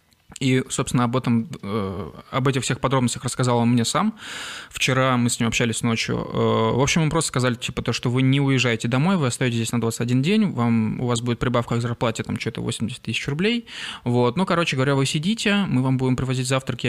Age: 20-39